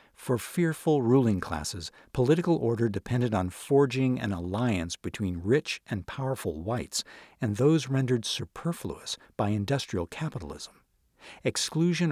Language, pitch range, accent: English, 95-130 Hz, American